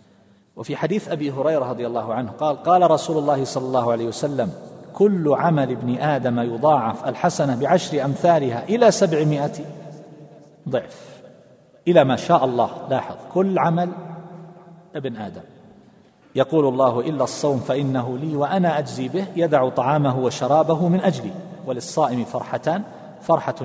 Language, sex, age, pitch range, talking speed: Arabic, male, 40-59, 120-155 Hz, 130 wpm